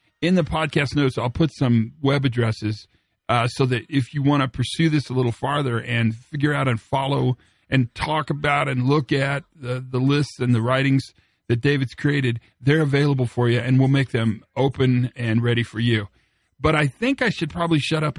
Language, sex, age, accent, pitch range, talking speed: English, male, 40-59, American, 120-150 Hz, 205 wpm